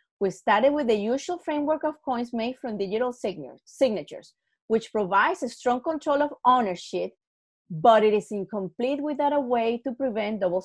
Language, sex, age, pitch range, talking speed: English, female, 30-49, 225-290 Hz, 165 wpm